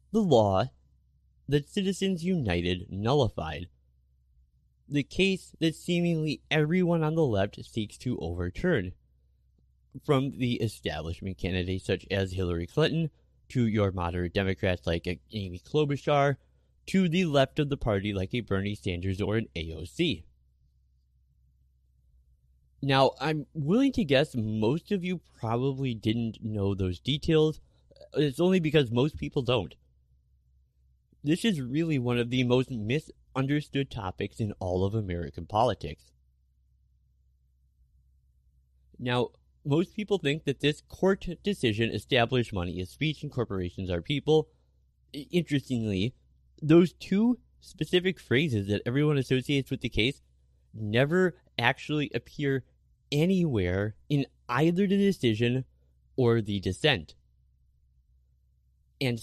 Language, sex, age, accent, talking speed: English, male, 20-39, American, 120 wpm